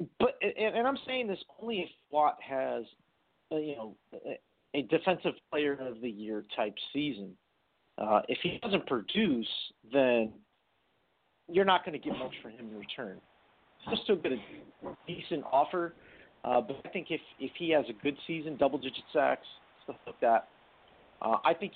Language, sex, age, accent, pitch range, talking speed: English, male, 40-59, American, 125-160 Hz, 170 wpm